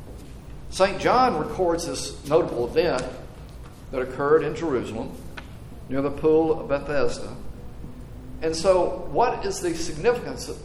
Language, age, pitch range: English, 50-69, 125-175 Hz